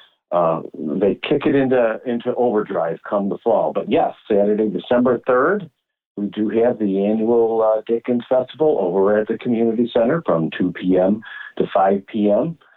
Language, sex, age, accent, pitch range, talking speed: English, male, 50-69, American, 100-125 Hz, 160 wpm